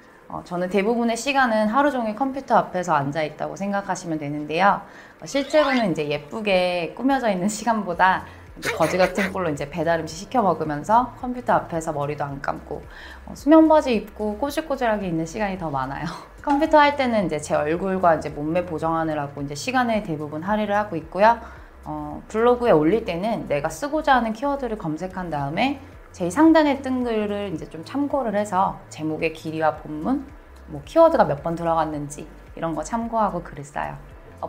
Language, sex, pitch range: Korean, female, 155-235 Hz